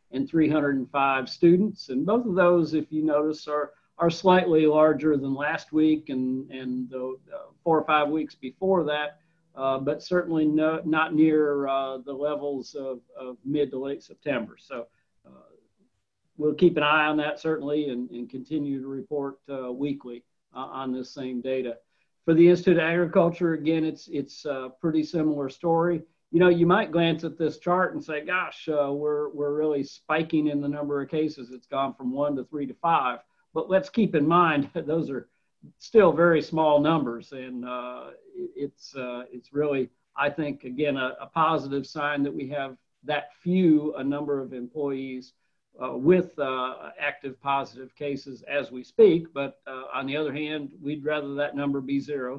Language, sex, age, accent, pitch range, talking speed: English, male, 50-69, American, 135-160 Hz, 180 wpm